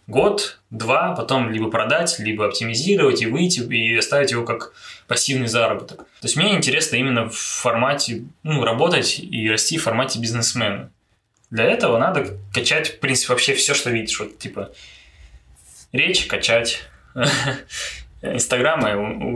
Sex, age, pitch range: male, 20-39, 115-140 Hz